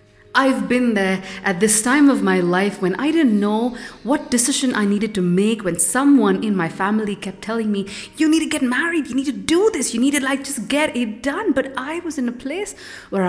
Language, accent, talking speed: English, Indian, 235 wpm